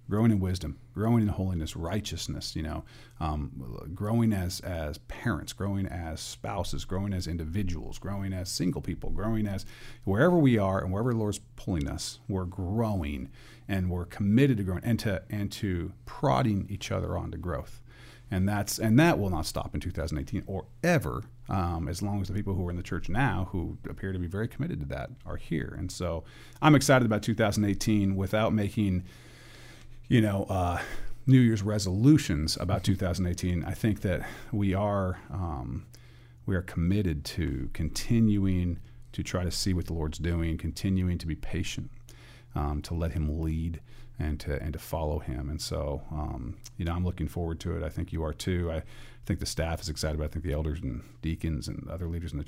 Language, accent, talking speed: English, American, 190 wpm